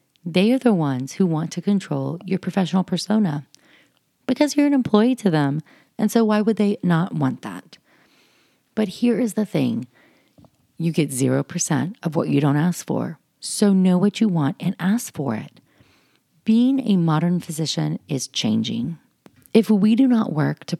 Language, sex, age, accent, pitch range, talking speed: English, female, 30-49, American, 150-190 Hz, 175 wpm